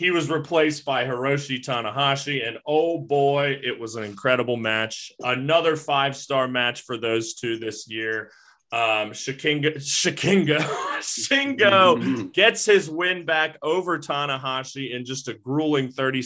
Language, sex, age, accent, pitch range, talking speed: English, male, 20-39, American, 115-150 Hz, 125 wpm